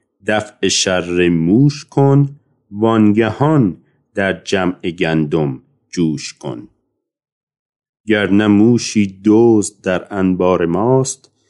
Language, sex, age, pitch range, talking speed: Persian, male, 40-59, 95-120 Hz, 85 wpm